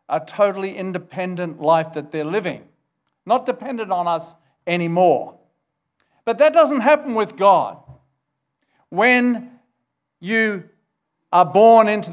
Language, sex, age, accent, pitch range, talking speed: English, male, 50-69, South African, 170-215 Hz, 115 wpm